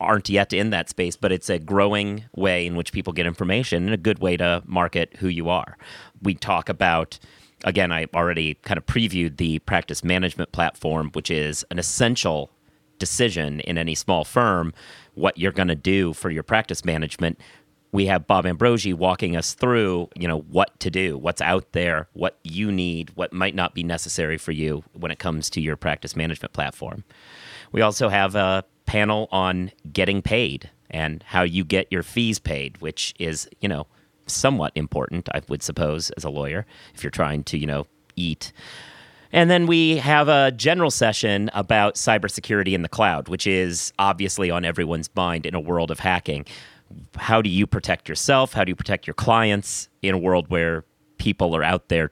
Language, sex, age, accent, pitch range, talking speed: English, male, 30-49, American, 80-100 Hz, 190 wpm